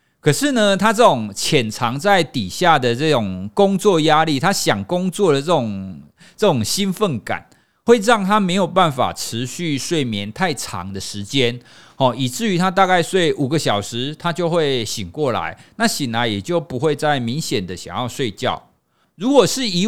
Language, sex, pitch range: Chinese, male, 120-185 Hz